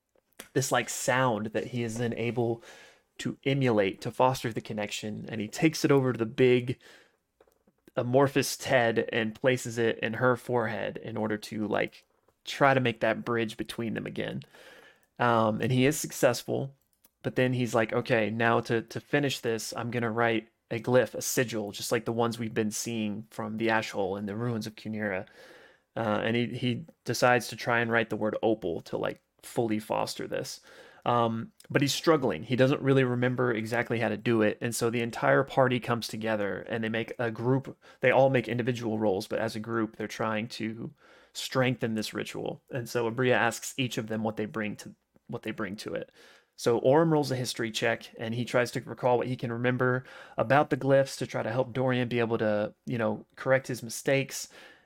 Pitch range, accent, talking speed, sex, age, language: 110-125 Hz, American, 200 wpm, male, 20-39, English